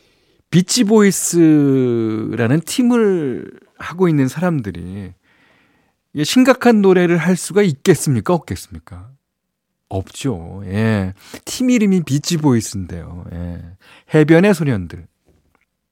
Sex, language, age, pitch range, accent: male, Korean, 40-59, 100-155 Hz, native